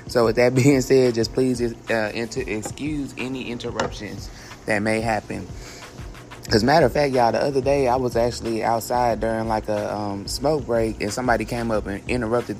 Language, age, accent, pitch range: English, 20-39, American, 110-125 Hz